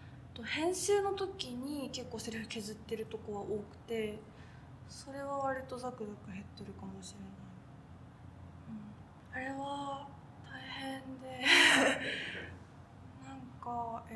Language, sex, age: Japanese, female, 20-39